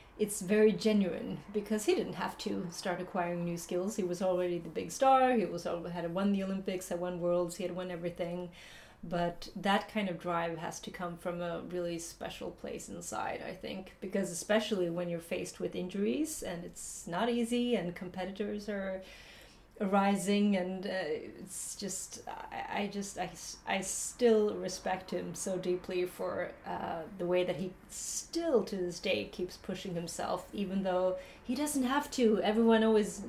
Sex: female